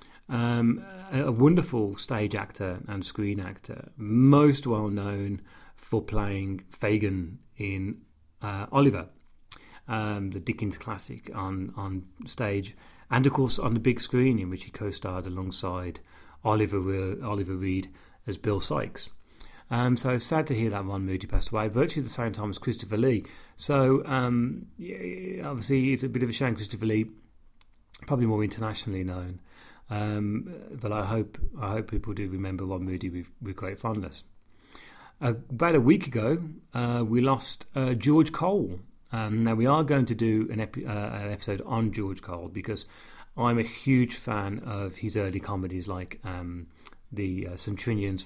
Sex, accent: male, British